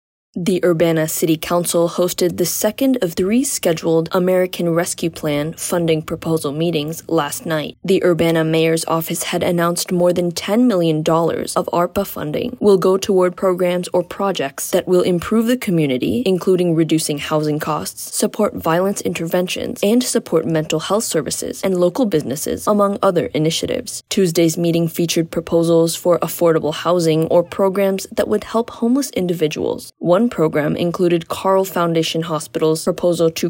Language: English